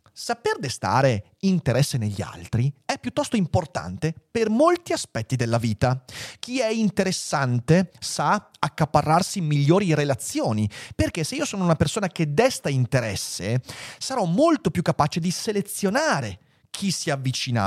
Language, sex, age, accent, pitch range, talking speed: Italian, male, 30-49, native, 130-195 Hz, 135 wpm